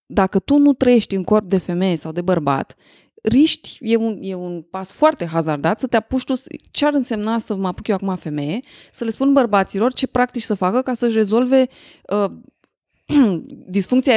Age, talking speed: 20-39, 180 wpm